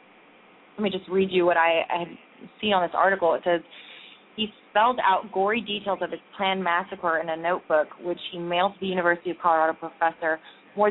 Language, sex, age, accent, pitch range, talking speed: English, female, 20-39, American, 170-200 Hz, 205 wpm